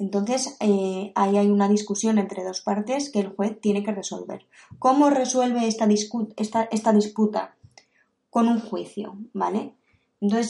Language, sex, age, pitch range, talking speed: Spanish, female, 20-39, 195-225 Hz, 145 wpm